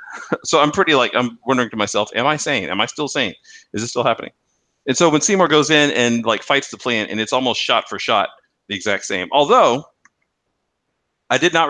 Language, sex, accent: English, male, American